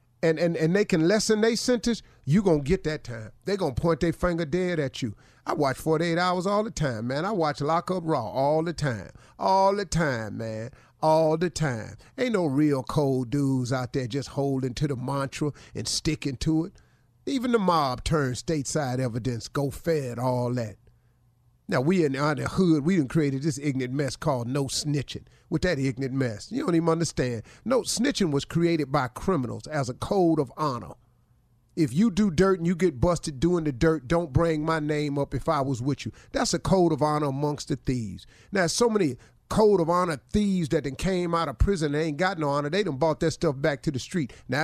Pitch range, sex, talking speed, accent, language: 130-170 Hz, male, 220 wpm, American, English